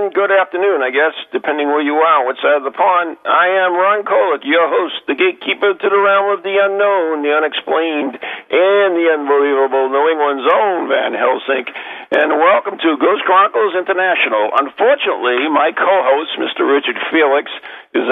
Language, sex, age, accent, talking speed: English, male, 50-69, American, 165 wpm